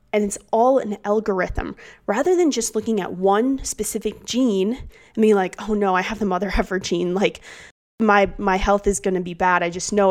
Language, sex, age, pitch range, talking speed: English, female, 20-39, 185-215 Hz, 210 wpm